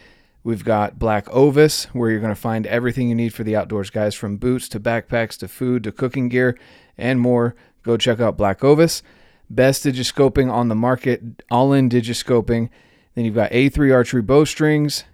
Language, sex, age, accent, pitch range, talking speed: English, male, 30-49, American, 110-130 Hz, 180 wpm